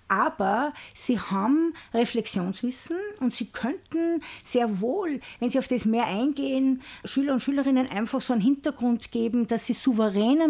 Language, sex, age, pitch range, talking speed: German, female, 50-69, 220-270 Hz, 150 wpm